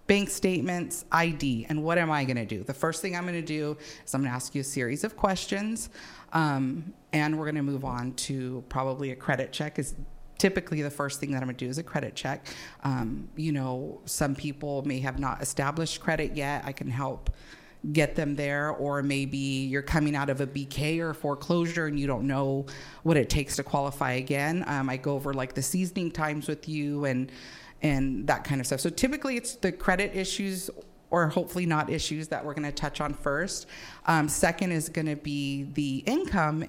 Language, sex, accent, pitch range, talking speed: English, female, American, 135-165 Hz, 210 wpm